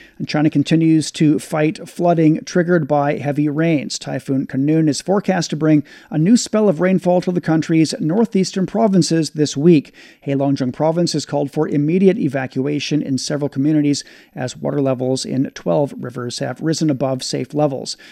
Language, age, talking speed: English, 40-59, 160 wpm